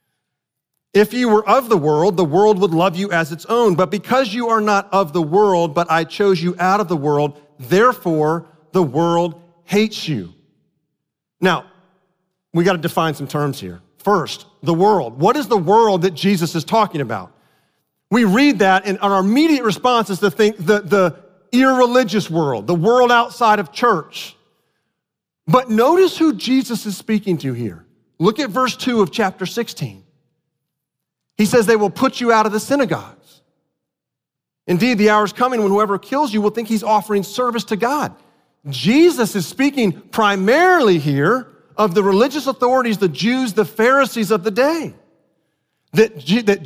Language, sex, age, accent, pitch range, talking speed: English, male, 40-59, American, 170-230 Hz, 170 wpm